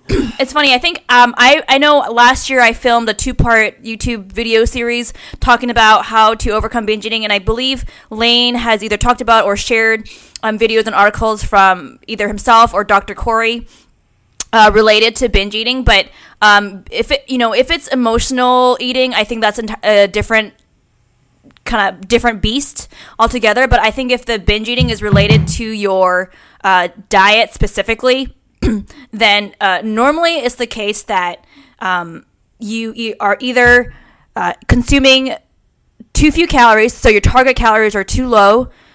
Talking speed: 165 wpm